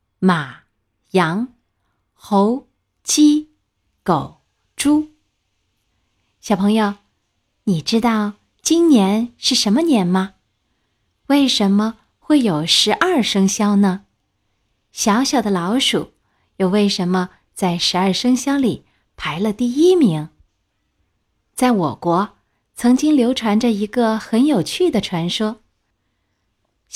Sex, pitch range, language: female, 175-250 Hz, Chinese